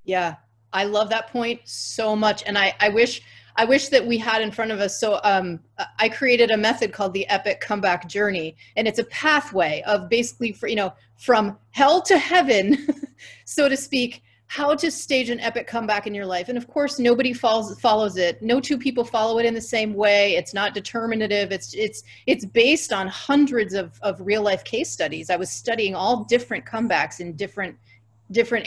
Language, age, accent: English, 30-49, American